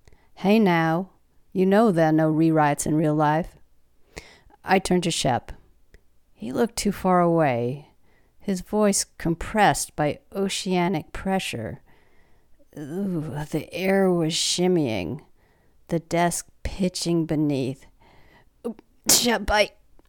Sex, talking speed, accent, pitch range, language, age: female, 115 wpm, American, 140-180 Hz, English, 50-69